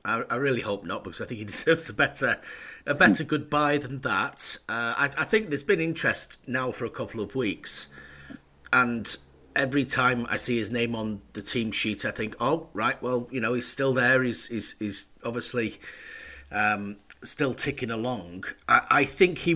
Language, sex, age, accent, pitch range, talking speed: English, male, 40-59, British, 105-130 Hz, 190 wpm